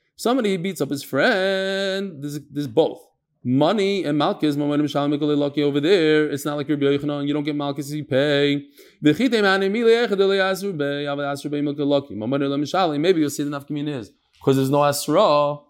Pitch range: 145-190 Hz